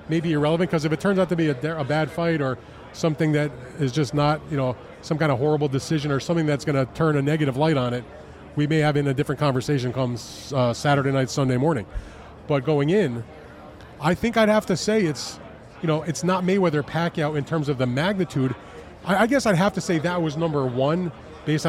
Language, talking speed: English, 230 wpm